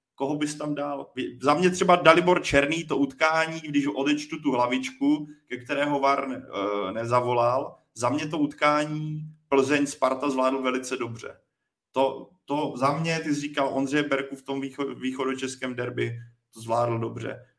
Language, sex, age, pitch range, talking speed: Czech, male, 30-49, 135-155 Hz, 150 wpm